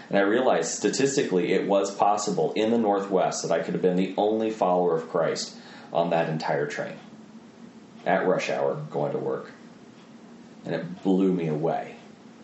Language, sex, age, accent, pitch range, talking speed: English, male, 30-49, American, 90-120 Hz, 170 wpm